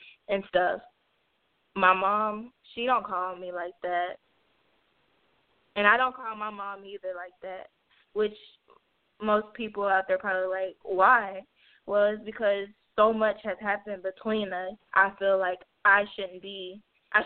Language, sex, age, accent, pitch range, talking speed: English, female, 10-29, American, 190-210 Hz, 150 wpm